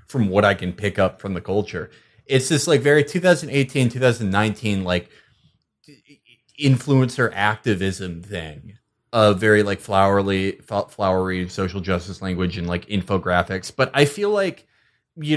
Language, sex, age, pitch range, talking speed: English, male, 30-49, 95-125 Hz, 135 wpm